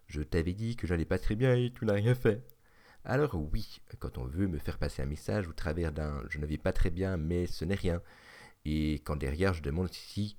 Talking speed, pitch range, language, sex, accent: 245 wpm, 75-105 Hz, French, male, French